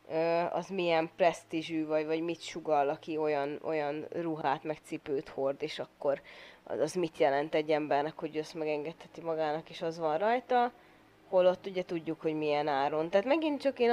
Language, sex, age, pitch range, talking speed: Hungarian, female, 20-39, 155-185 Hz, 170 wpm